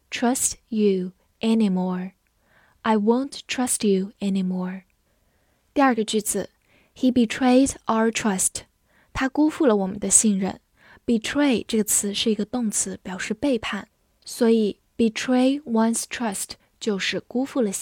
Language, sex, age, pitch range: Chinese, female, 10-29, 200-255 Hz